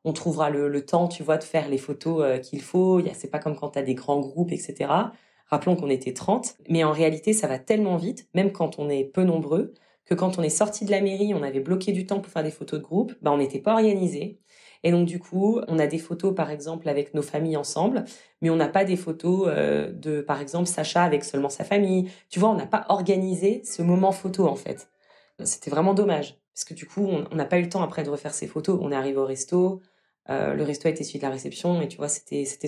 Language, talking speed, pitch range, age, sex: French, 265 wpm, 145-195 Hz, 30-49, female